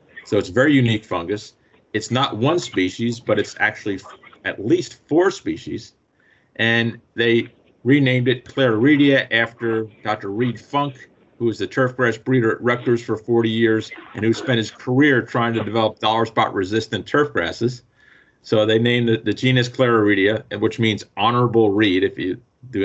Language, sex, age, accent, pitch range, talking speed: English, male, 50-69, American, 110-130 Hz, 170 wpm